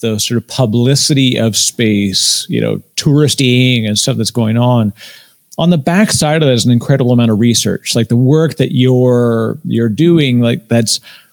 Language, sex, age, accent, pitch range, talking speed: English, male, 50-69, American, 120-145 Hz, 180 wpm